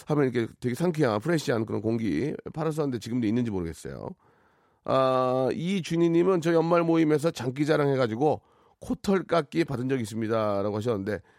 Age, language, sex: 40-59, Korean, male